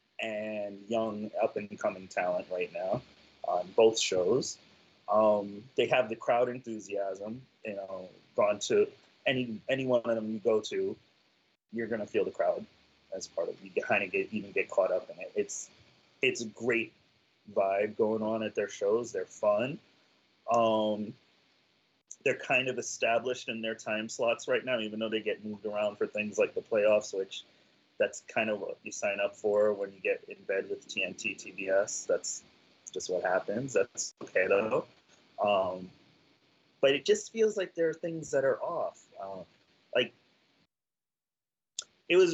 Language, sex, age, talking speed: English, male, 30-49, 170 wpm